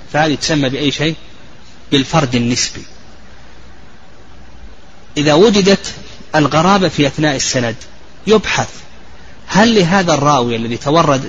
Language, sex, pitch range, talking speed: Arabic, male, 130-160 Hz, 95 wpm